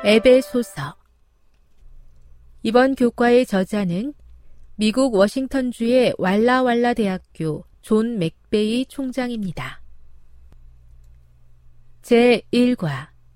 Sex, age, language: female, 40-59, Korean